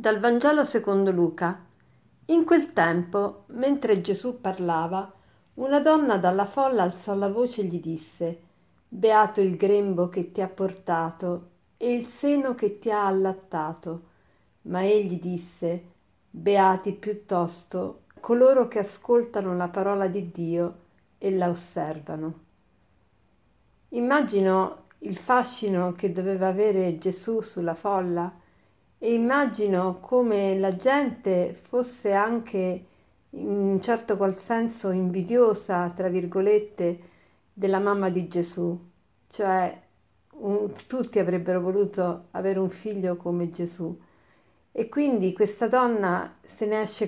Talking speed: 120 wpm